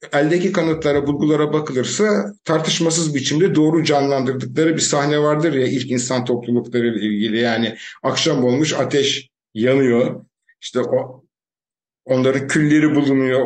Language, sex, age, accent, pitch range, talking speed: Turkish, male, 50-69, native, 135-180 Hz, 120 wpm